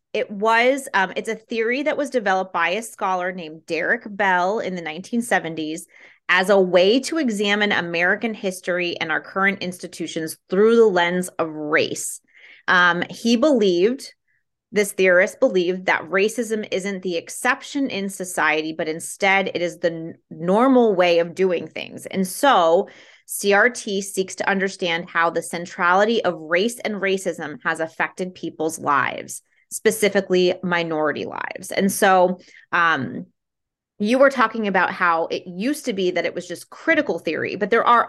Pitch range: 175-225 Hz